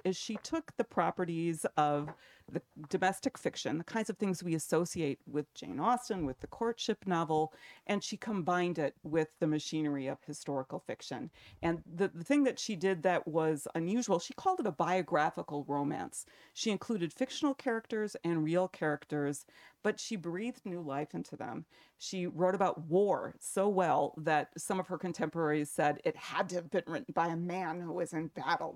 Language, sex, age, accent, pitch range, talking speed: English, female, 40-59, American, 155-210 Hz, 180 wpm